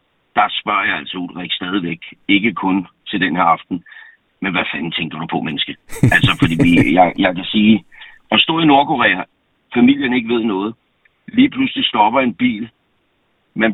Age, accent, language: 60-79, native, Danish